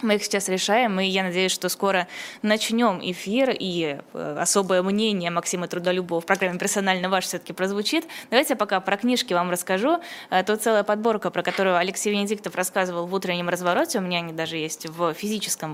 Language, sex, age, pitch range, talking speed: Russian, female, 20-39, 175-205 Hz, 180 wpm